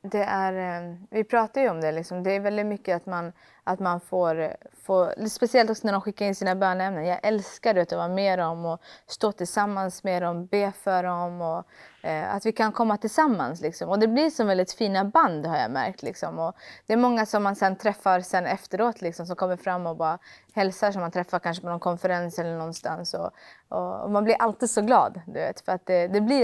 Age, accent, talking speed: 20-39, Swedish, 230 wpm